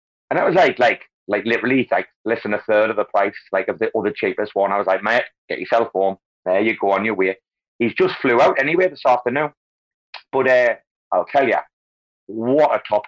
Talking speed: 225 wpm